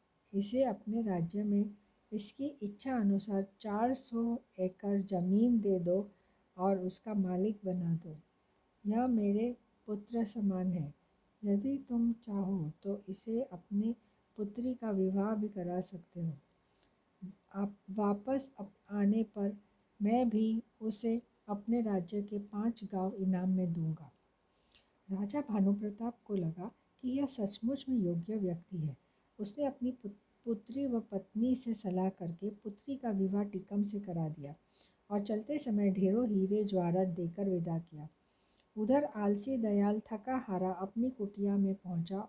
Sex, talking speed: female, 135 wpm